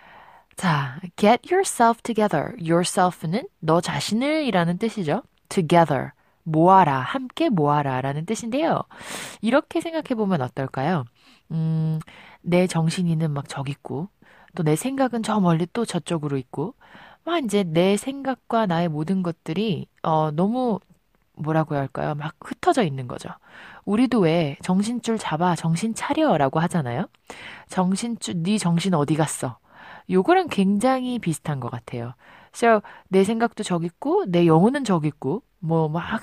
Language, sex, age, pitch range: Korean, female, 20-39, 160-225 Hz